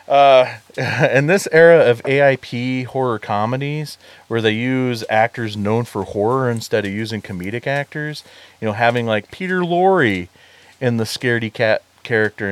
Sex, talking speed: male, 150 wpm